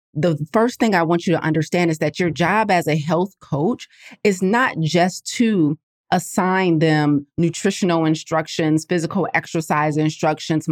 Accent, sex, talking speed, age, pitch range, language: American, female, 150 wpm, 30-49, 155-195 Hz, English